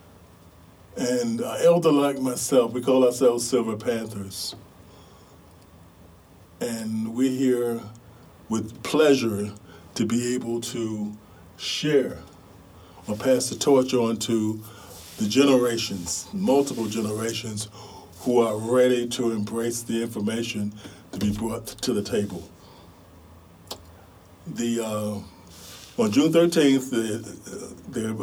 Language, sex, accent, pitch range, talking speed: English, male, American, 90-125 Hz, 105 wpm